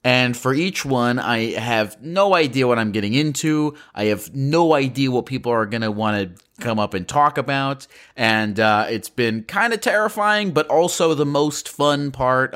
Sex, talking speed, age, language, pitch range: male, 195 wpm, 30-49, English, 110-150 Hz